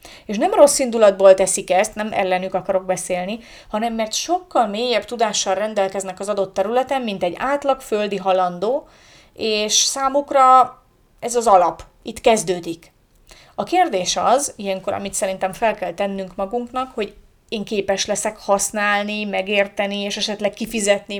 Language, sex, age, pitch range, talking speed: Hungarian, female, 30-49, 190-240 Hz, 140 wpm